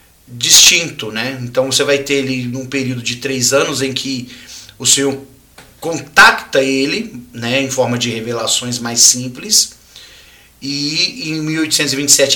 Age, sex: 40-59, male